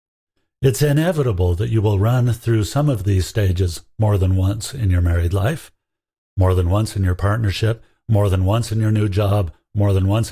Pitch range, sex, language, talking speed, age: 95-115 Hz, male, English, 200 wpm, 60-79